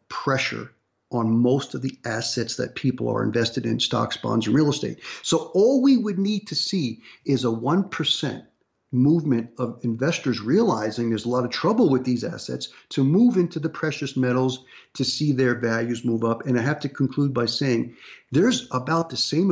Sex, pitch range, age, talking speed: male, 120-155 Hz, 50-69, 190 wpm